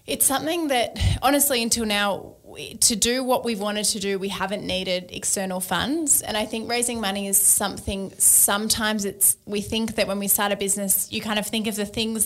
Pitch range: 190-215 Hz